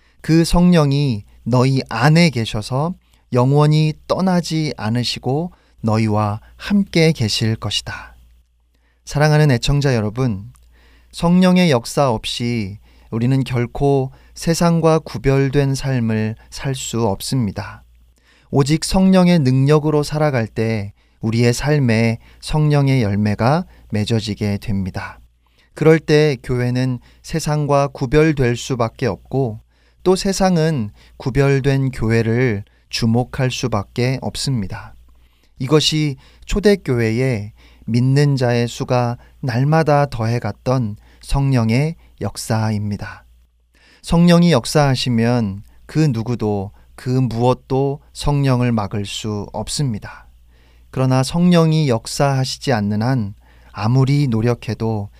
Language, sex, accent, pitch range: Korean, male, native, 110-145 Hz